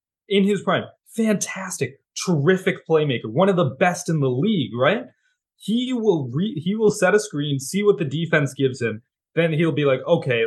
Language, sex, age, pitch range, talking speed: English, male, 20-39, 135-200 Hz, 190 wpm